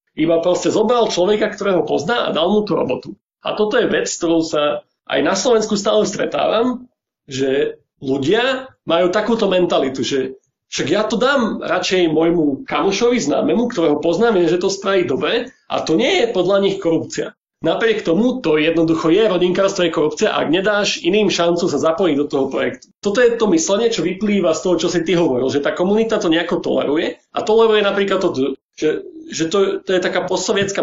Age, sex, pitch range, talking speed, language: 40-59, male, 170-225 Hz, 190 wpm, Slovak